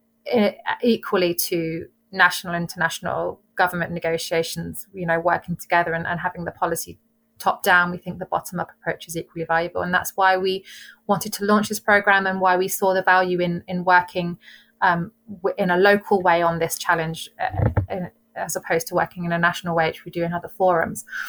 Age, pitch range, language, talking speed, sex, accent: 30-49, 175-200 Hz, English, 185 wpm, female, British